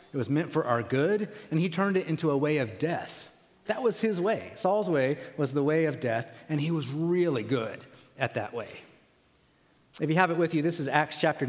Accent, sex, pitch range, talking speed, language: American, male, 135-170 Hz, 230 wpm, English